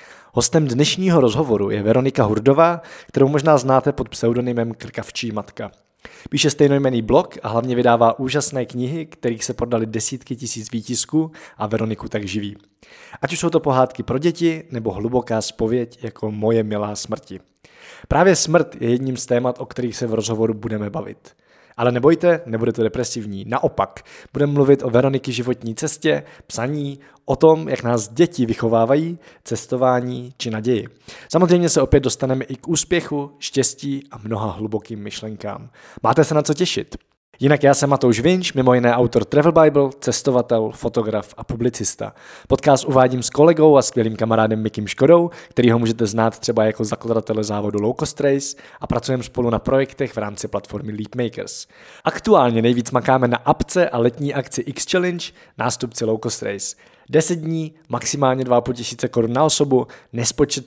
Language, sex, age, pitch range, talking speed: Czech, male, 20-39, 115-140 Hz, 160 wpm